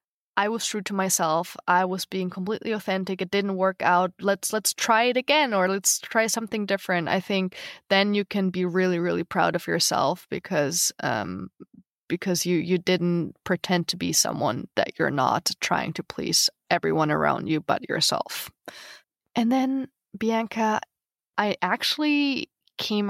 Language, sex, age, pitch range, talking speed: English, female, 20-39, 175-205 Hz, 160 wpm